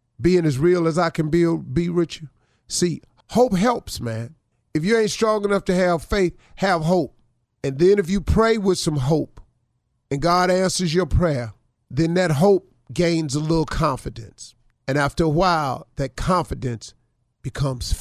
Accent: American